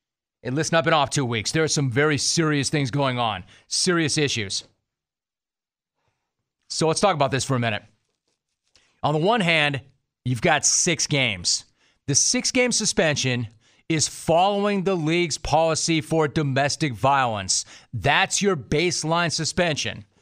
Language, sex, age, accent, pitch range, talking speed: English, male, 40-59, American, 130-165 Hz, 140 wpm